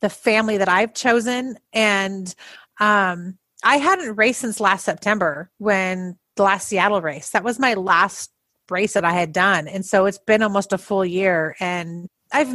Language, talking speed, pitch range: English, 175 wpm, 195-255 Hz